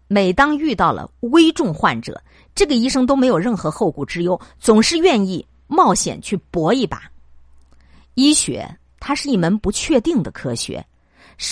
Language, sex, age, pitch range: Chinese, female, 50-69, 170-265 Hz